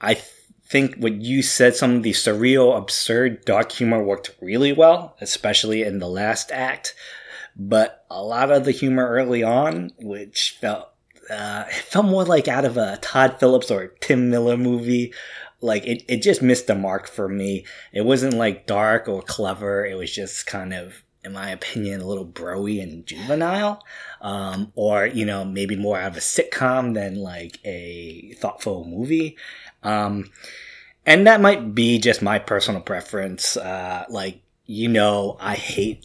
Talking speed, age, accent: 170 wpm, 20-39, American